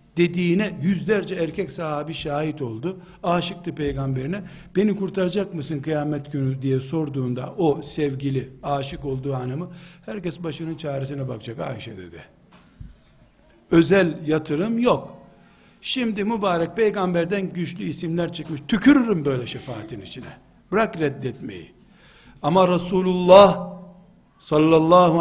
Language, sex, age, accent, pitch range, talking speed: Turkish, male, 60-79, native, 150-190 Hz, 105 wpm